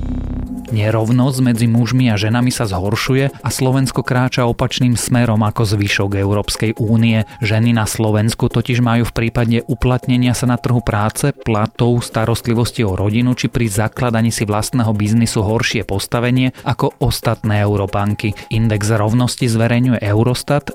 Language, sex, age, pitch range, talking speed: Slovak, male, 30-49, 105-120 Hz, 135 wpm